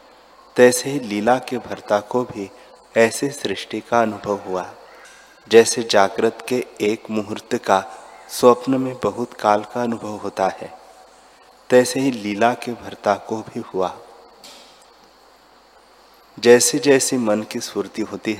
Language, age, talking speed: Hindi, 30-49, 130 wpm